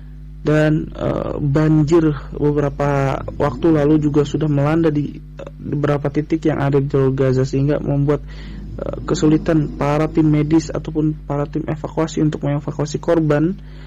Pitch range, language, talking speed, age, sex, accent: 145-160 Hz, Indonesian, 140 wpm, 30-49, male, native